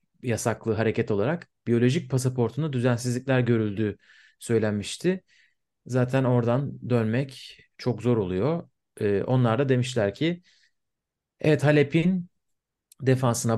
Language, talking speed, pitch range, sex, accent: Turkish, 95 wpm, 110-130 Hz, male, native